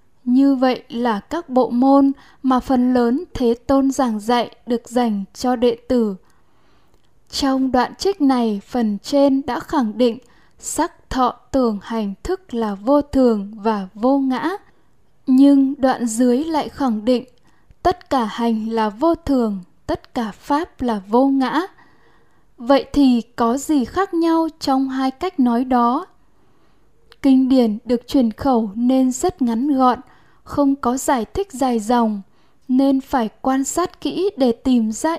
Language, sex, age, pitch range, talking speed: Vietnamese, female, 10-29, 235-280 Hz, 155 wpm